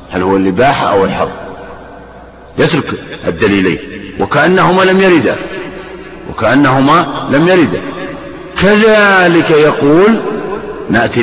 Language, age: Arabic, 50-69